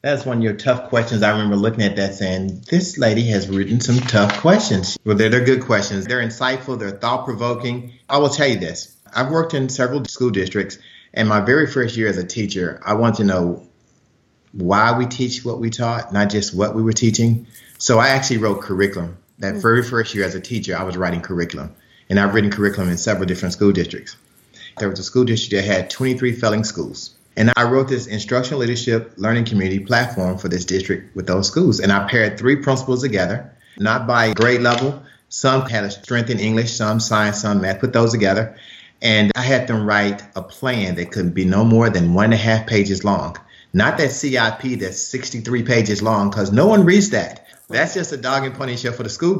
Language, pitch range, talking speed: English, 100-125 Hz, 215 wpm